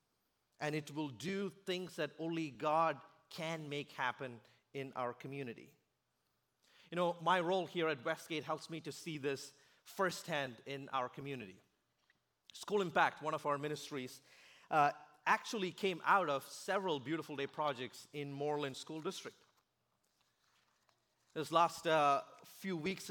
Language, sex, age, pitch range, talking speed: English, male, 30-49, 140-170 Hz, 140 wpm